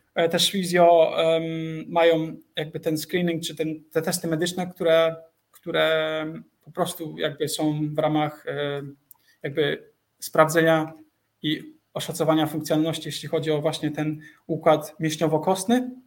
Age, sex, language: 20-39, male, Polish